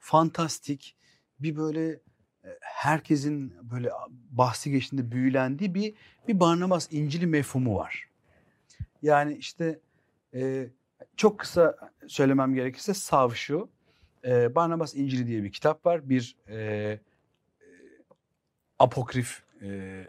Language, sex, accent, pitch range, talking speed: Turkish, male, native, 110-155 Hz, 85 wpm